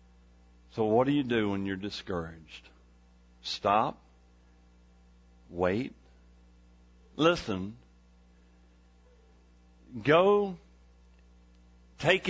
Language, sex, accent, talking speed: English, male, American, 65 wpm